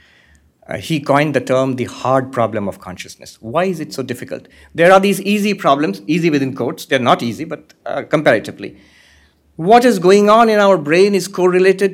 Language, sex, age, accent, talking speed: English, male, 60-79, Indian, 190 wpm